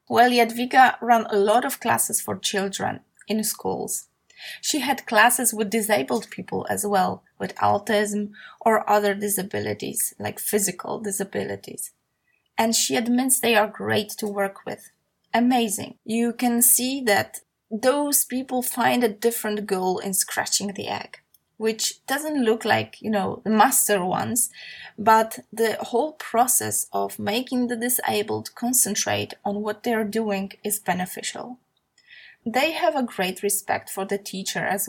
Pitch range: 200-240 Hz